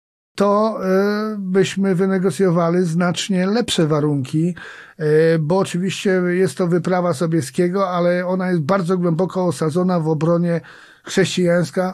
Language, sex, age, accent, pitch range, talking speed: Polish, male, 50-69, native, 160-190 Hz, 105 wpm